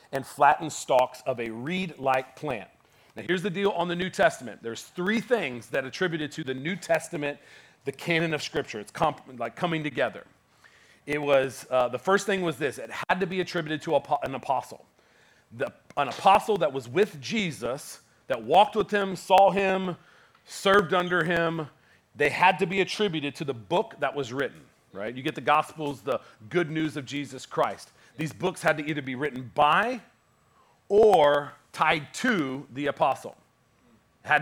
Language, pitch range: English, 135-180 Hz